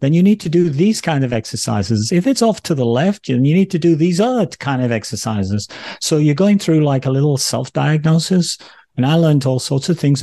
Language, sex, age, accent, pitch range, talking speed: English, male, 40-59, British, 110-135 Hz, 230 wpm